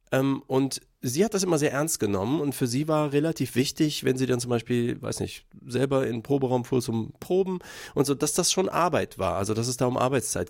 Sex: male